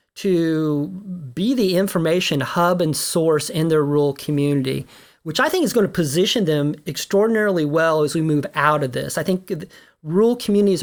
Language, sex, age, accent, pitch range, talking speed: English, male, 40-59, American, 150-195 Hz, 170 wpm